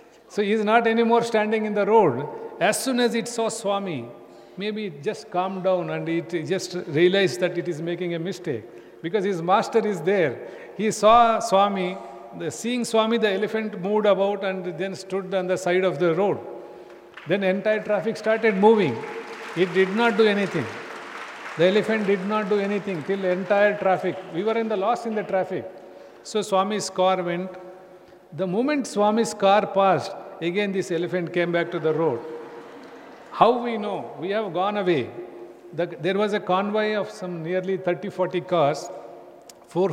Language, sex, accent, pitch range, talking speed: English, male, Indian, 170-210 Hz, 175 wpm